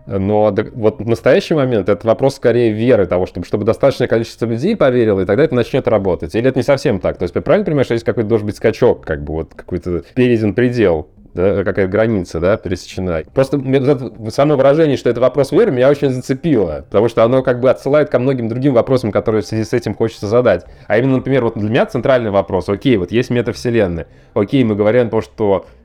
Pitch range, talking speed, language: 105-130 Hz, 220 wpm, Russian